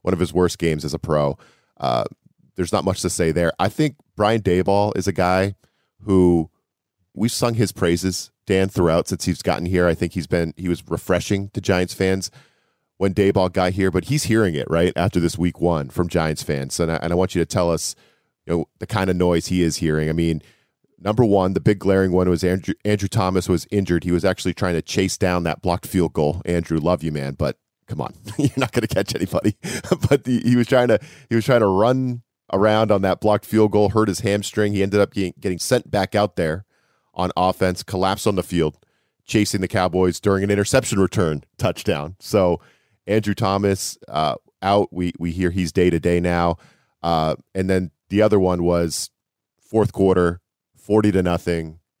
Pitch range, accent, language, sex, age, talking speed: 85-105 Hz, American, English, male, 40-59, 210 wpm